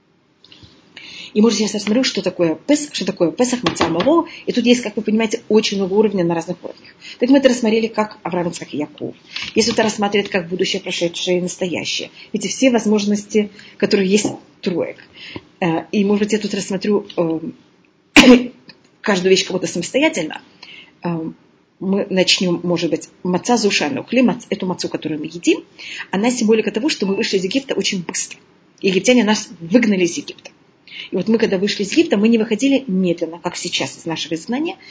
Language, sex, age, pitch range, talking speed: Russian, female, 30-49, 185-240 Hz, 170 wpm